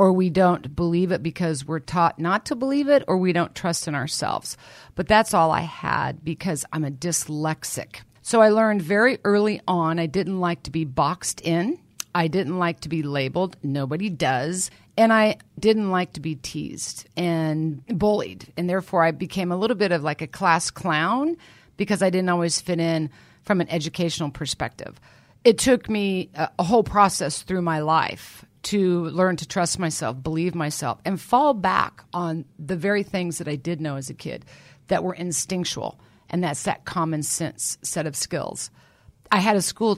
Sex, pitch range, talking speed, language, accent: female, 155-195 Hz, 185 wpm, English, American